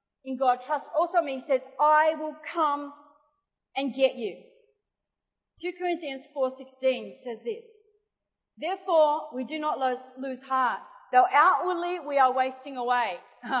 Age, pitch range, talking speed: 40-59, 250-325 Hz, 130 wpm